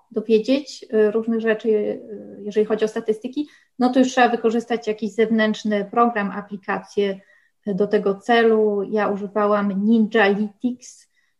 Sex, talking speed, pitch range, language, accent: female, 135 wpm, 200-240 Hz, Polish, native